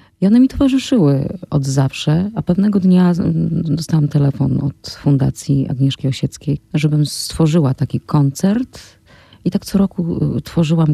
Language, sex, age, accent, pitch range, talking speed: Polish, female, 30-49, native, 140-165 Hz, 130 wpm